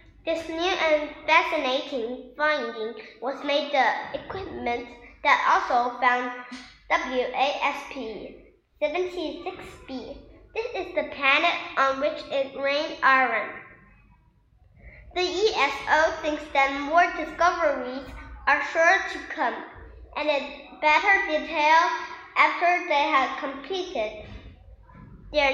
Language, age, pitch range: Chinese, 10-29, 270-340 Hz